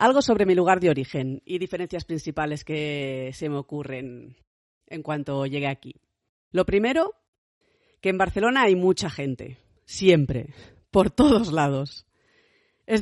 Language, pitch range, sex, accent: Spanish, 155-200 Hz, female, Spanish